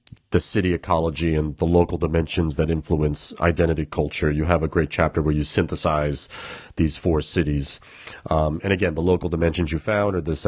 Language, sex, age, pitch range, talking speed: English, male, 30-49, 80-95 Hz, 185 wpm